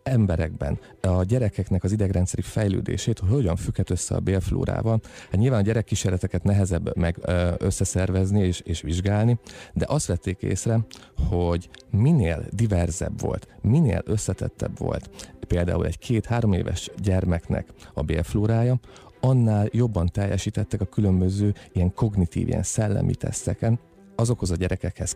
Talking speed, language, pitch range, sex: 125 wpm, Hungarian, 90-110 Hz, male